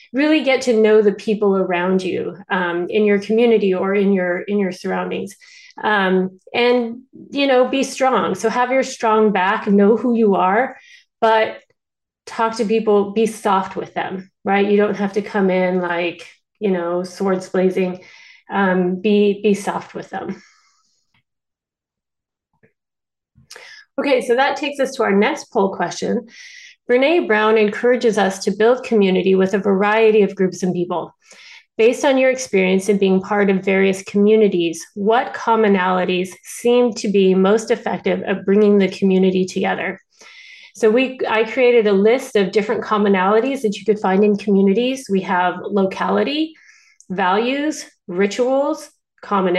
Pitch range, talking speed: 190-245 Hz, 150 wpm